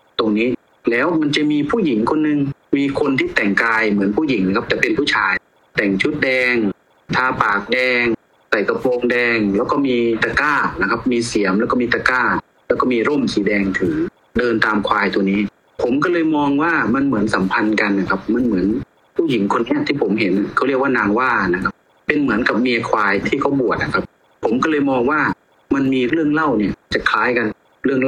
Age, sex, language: 30-49, male, Thai